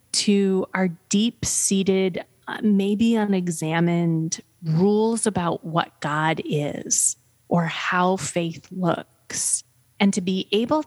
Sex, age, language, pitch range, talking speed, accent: female, 30-49, English, 165-210 Hz, 100 wpm, American